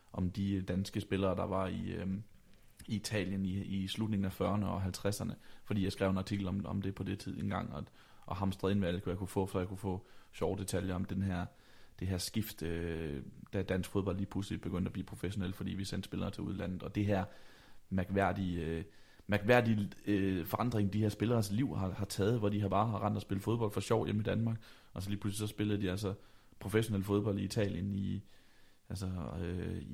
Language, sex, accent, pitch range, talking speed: Danish, male, native, 95-105 Hz, 220 wpm